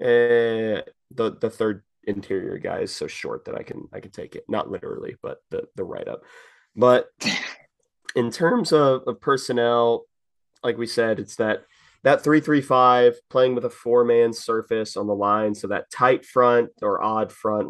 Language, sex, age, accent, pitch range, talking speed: English, male, 20-39, American, 105-150 Hz, 175 wpm